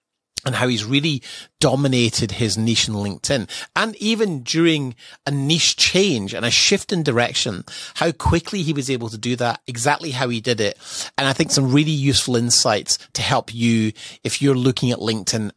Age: 30-49